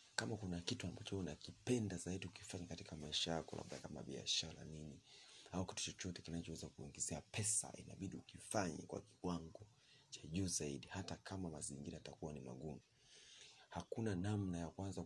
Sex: male